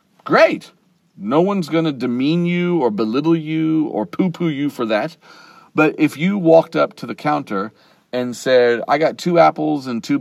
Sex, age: male, 40-59